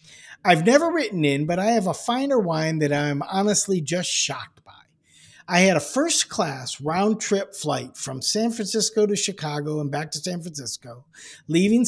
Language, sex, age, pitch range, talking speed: English, male, 50-69, 150-215 Hz, 165 wpm